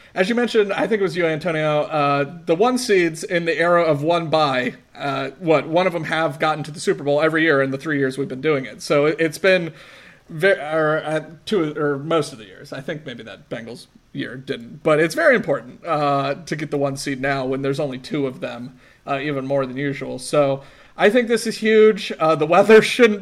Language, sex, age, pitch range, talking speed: English, male, 40-59, 140-190 Hz, 240 wpm